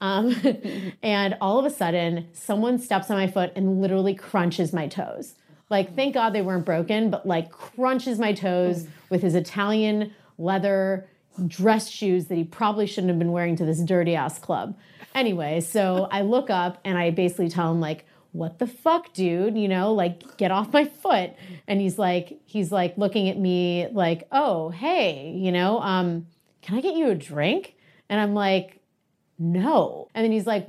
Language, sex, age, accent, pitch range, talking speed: English, female, 30-49, American, 175-210 Hz, 185 wpm